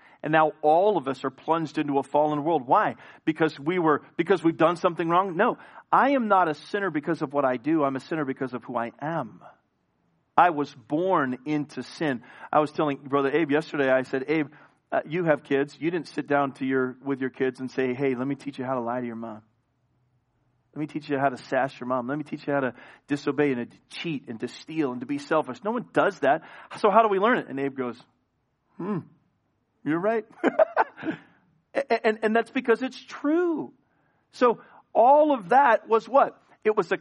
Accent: American